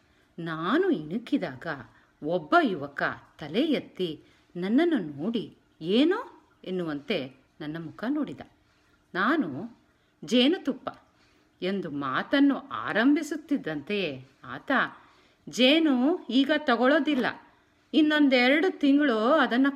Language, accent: Kannada, native